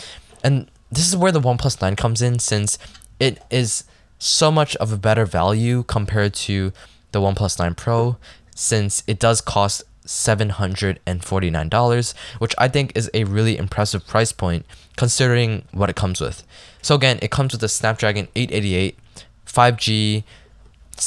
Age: 10-29